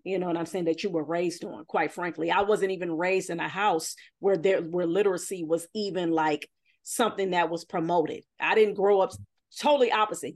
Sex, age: female, 40-59